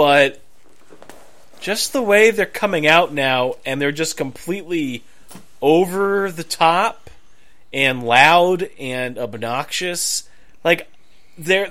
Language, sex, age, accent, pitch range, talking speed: English, male, 30-49, American, 145-200 Hz, 110 wpm